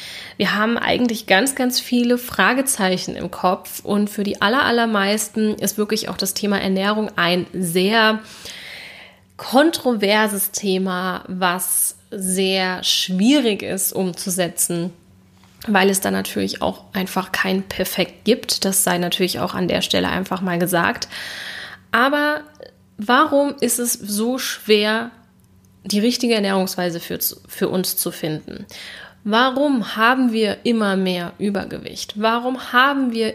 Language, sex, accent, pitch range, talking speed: German, female, German, 185-225 Hz, 125 wpm